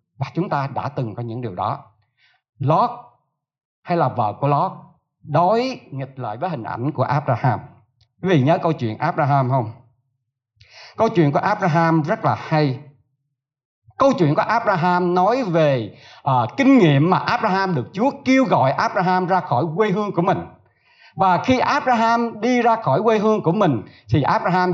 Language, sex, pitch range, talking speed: Vietnamese, male, 130-200 Hz, 165 wpm